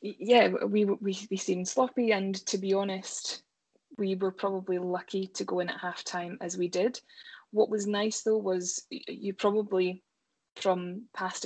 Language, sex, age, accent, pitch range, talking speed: English, female, 20-39, British, 180-205 Hz, 170 wpm